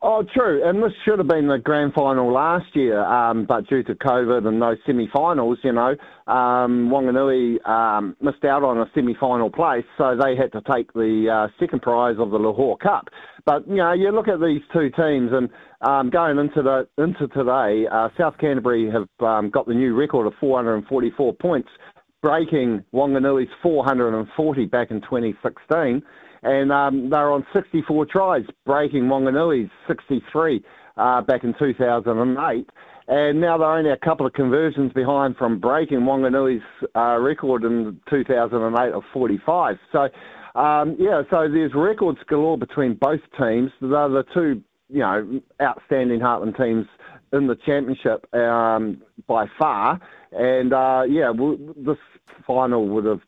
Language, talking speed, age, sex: English, 160 wpm, 40-59, male